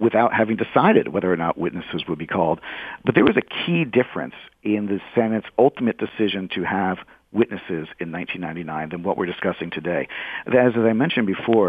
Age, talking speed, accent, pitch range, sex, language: 50-69, 185 wpm, American, 95-115 Hz, male, English